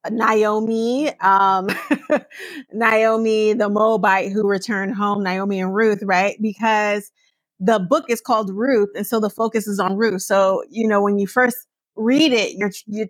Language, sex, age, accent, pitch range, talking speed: English, female, 30-49, American, 205-255 Hz, 160 wpm